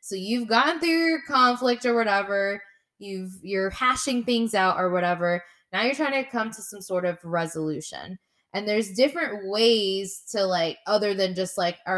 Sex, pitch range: female, 170-225 Hz